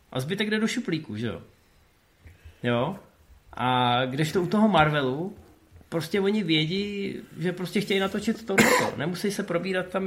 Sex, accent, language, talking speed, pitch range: male, native, Czech, 150 wpm, 130-175 Hz